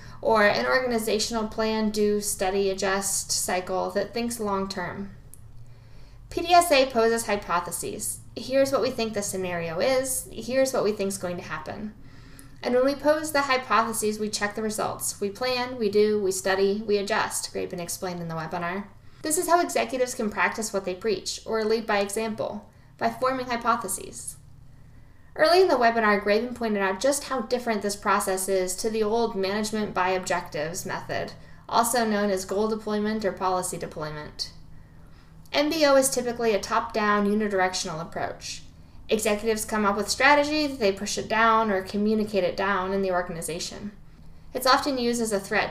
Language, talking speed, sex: English, 160 wpm, female